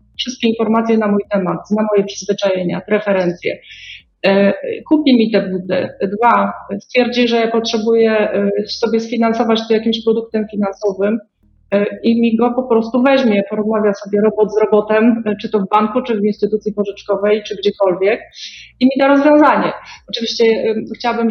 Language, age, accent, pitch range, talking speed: Polish, 40-59, native, 210-240 Hz, 145 wpm